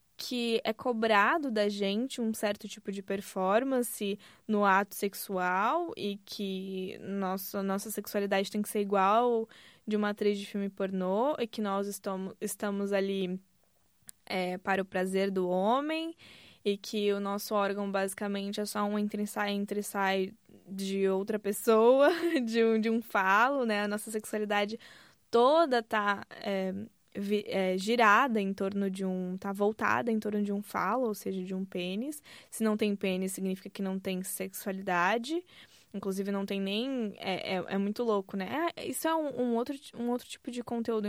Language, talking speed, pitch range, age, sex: Portuguese, 165 wpm, 195-220 Hz, 10-29, female